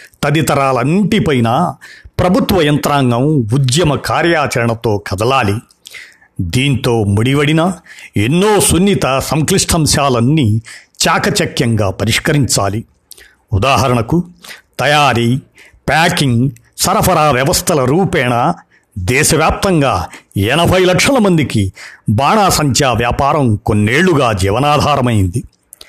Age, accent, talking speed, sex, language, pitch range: 50-69, native, 60 wpm, male, Telugu, 120-165 Hz